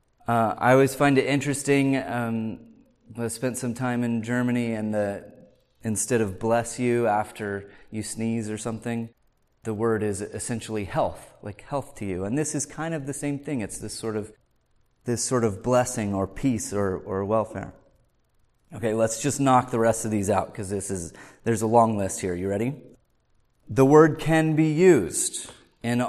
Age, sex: 30-49, male